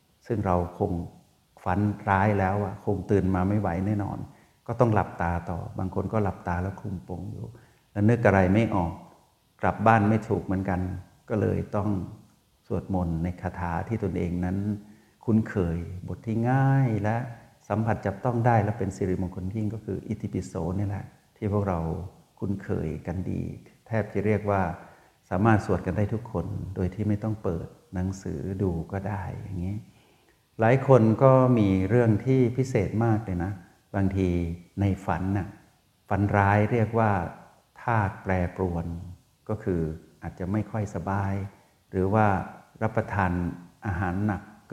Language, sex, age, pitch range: Thai, male, 60-79, 90-105 Hz